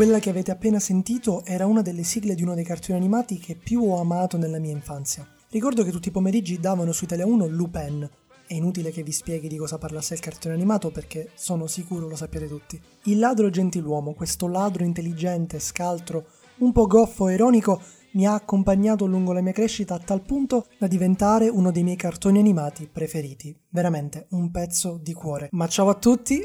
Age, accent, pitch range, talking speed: 20-39, native, 170-210 Hz, 195 wpm